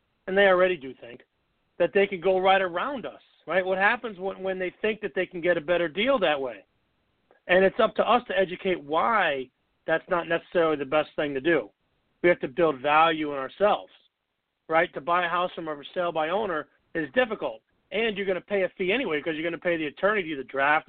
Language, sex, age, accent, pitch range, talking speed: English, male, 40-59, American, 165-200 Hz, 230 wpm